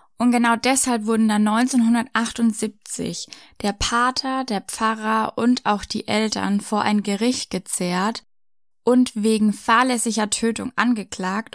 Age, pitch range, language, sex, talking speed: 10-29, 205-235 Hz, German, female, 120 wpm